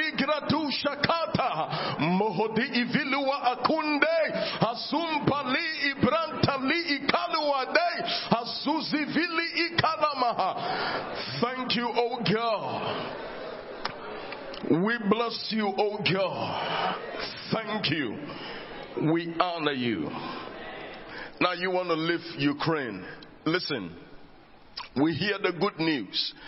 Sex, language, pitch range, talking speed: male, English, 180-275 Hz, 60 wpm